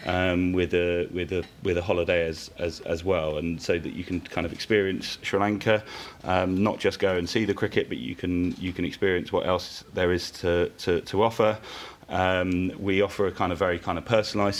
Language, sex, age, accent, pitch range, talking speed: English, male, 30-49, British, 85-95 Hz, 220 wpm